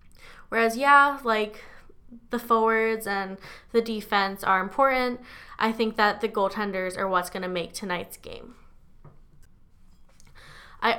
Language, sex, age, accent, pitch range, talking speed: English, female, 10-29, American, 185-225 Hz, 125 wpm